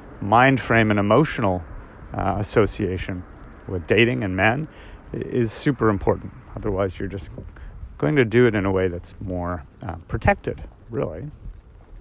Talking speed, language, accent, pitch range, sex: 140 wpm, English, American, 100-130 Hz, male